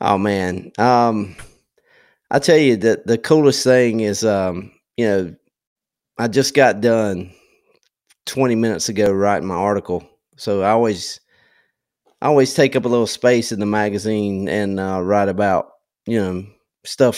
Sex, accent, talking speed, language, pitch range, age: male, American, 155 wpm, English, 95-115 Hz, 30-49